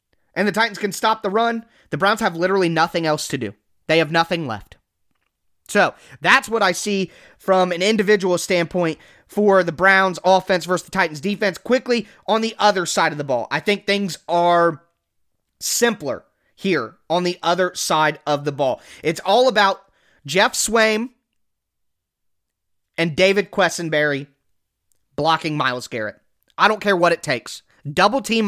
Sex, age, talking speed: male, 30-49, 160 wpm